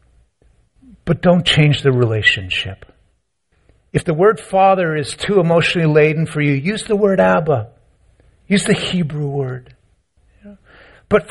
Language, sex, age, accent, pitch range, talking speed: English, male, 50-69, American, 130-185 Hz, 125 wpm